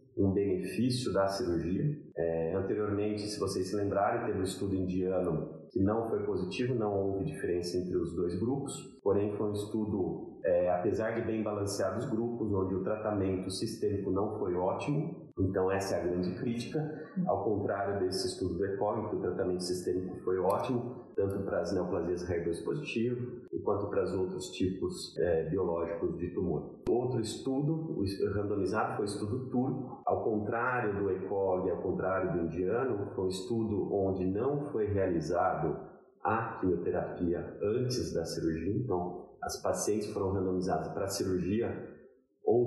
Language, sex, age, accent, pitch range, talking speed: Portuguese, male, 40-59, Brazilian, 95-120 Hz, 155 wpm